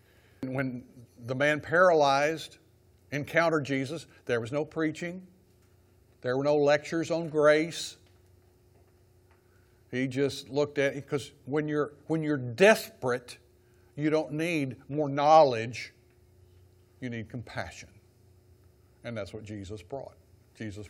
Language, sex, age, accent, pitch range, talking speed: English, male, 60-79, American, 110-145 Hz, 115 wpm